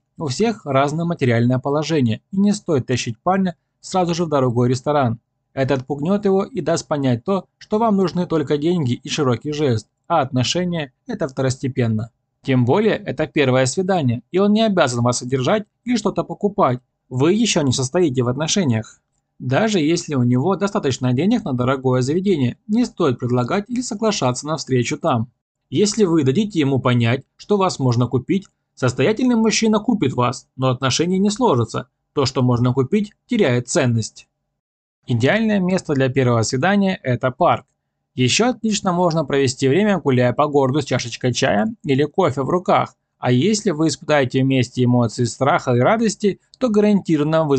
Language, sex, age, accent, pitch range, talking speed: Russian, male, 20-39, native, 125-180 Hz, 160 wpm